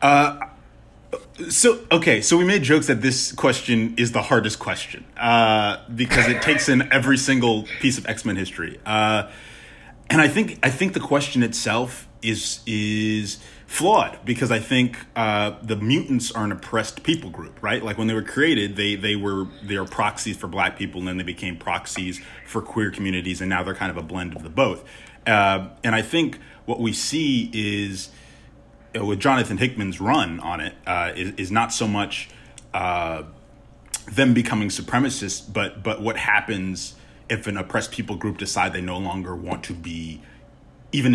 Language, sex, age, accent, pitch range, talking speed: English, male, 30-49, American, 100-130 Hz, 180 wpm